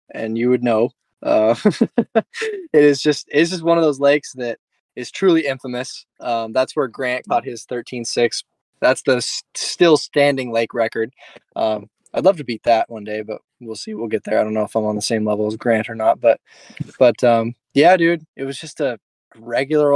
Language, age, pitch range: English, 10-29, 115-145 Hz